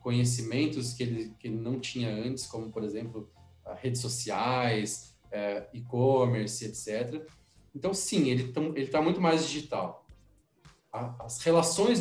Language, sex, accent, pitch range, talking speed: Portuguese, male, Brazilian, 120-155 Hz, 145 wpm